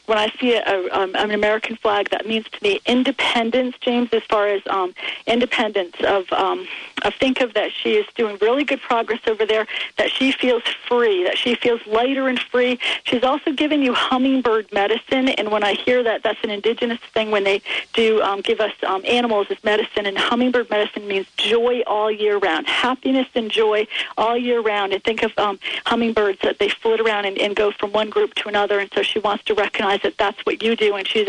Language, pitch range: English, 210-255 Hz